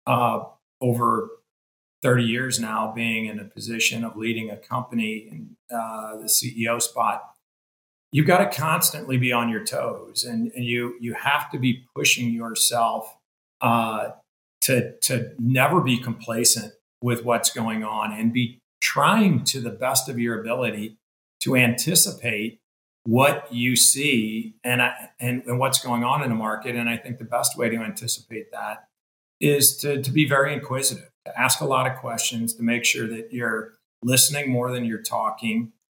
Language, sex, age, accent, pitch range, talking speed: English, male, 40-59, American, 115-135 Hz, 165 wpm